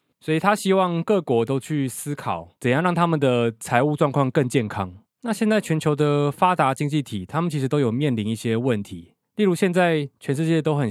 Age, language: 20-39, Chinese